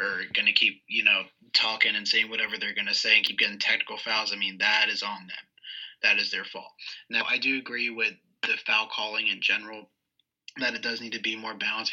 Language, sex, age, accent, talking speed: English, male, 20-39, American, 235 wpm